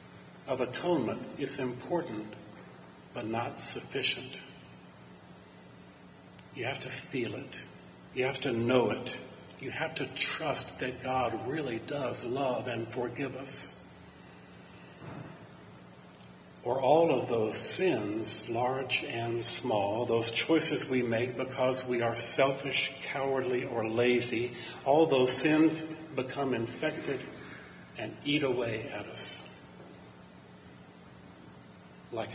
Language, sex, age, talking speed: English, male, 50-69, 110 wpm